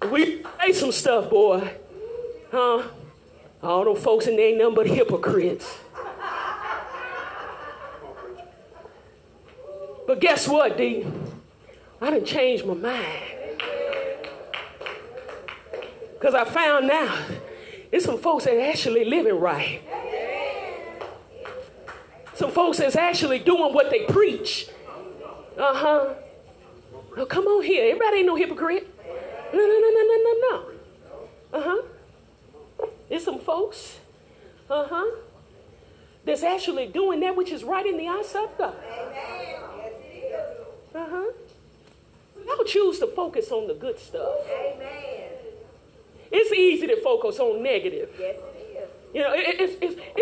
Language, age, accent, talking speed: English, 30-49, American, 125 wpm